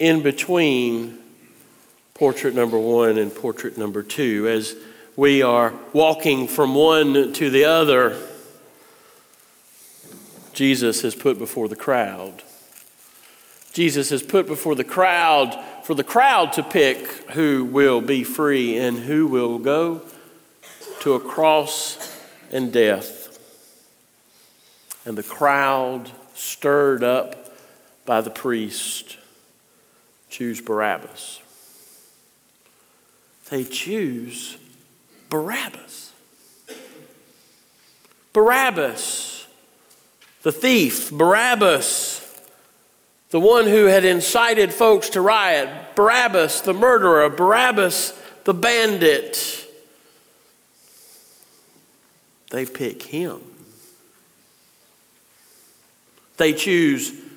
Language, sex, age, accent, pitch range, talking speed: English, male, 50-69, American, 130-210 Hz, 90 wpm